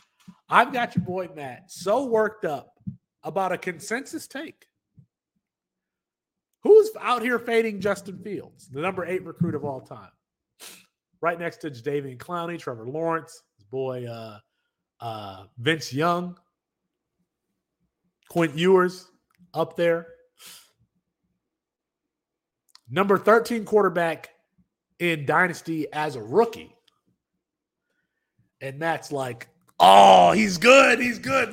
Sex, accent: male, American